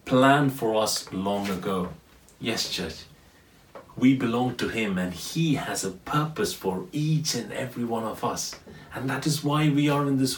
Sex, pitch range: male, 130-175 Hz